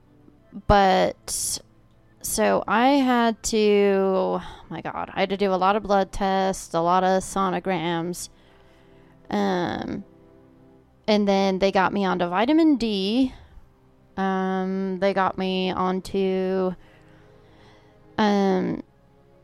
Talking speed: 110 wpm